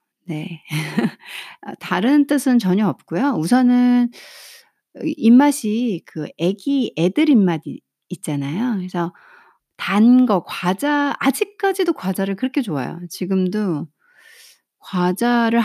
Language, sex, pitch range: Korean, female, 170-255 Hz